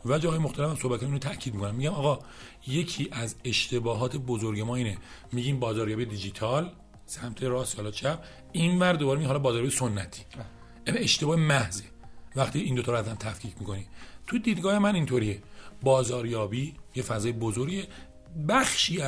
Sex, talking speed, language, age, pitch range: male, 145 wpm, Persian, 40-59, 110-155 Hz